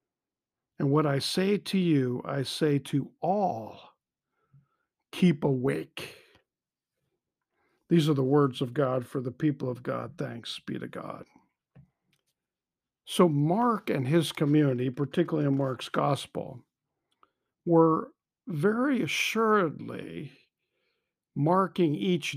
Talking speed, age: 110 wpm, 50-69